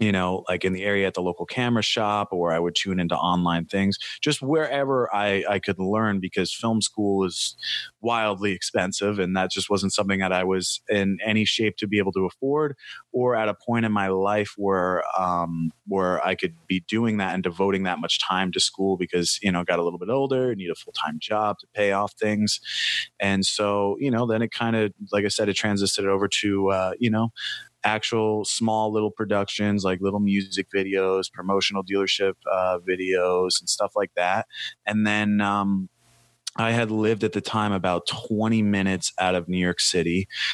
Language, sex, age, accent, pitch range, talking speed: English, male, 30-49, American, 95-110 Hz, 205 wpm